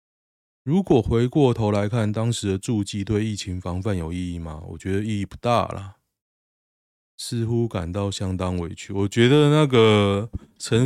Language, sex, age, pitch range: Chinese, male, 20-39, 90-115 Hz